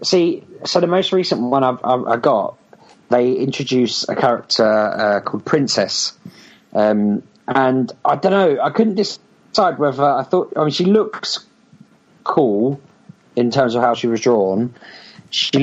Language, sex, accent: English, male, British